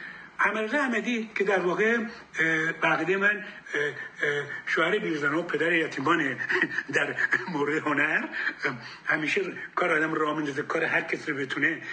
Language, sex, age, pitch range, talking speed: Persian, male, 60-79, 195-255 Hz, 125 wpm